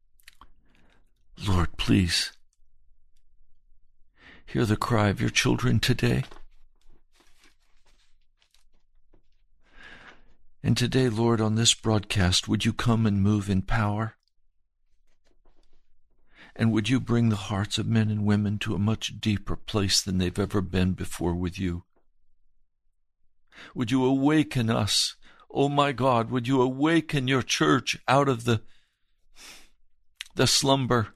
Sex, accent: male, American